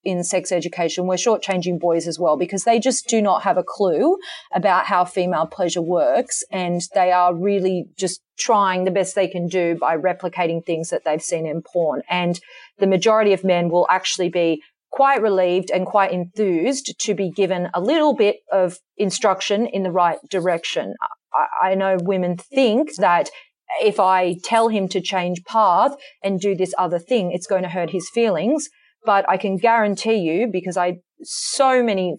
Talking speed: 180 wpm